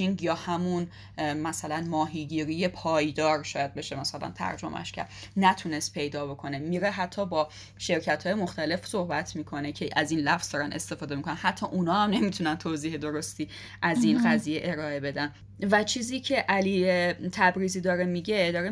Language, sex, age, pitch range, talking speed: English, female, 10-29, 155-195 Hz, 150 wpm